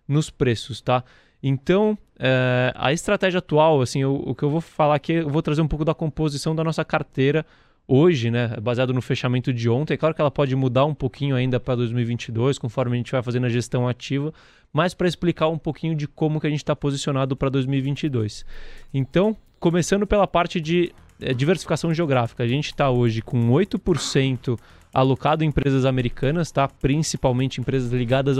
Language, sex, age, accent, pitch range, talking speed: Portuguese, male, 20-39, Brazilian, 125-155 Hz, 185 wpm